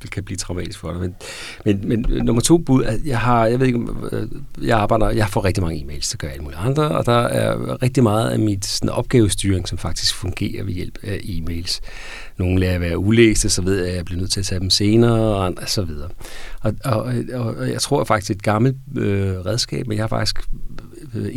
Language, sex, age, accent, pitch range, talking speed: Danish, male, 40-59, native, 90-115 Hz, 225 wpm